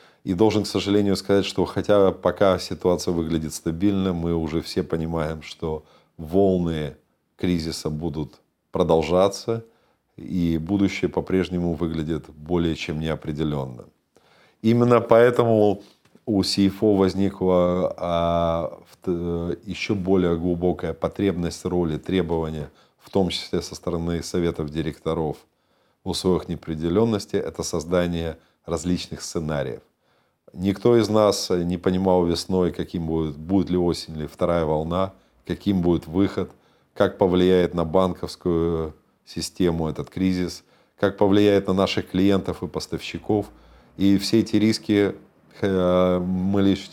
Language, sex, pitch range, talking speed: Russian, male, 85-95 Hz, 115 wpm